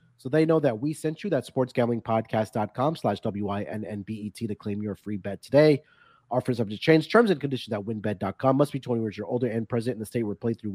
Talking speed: 210 wpm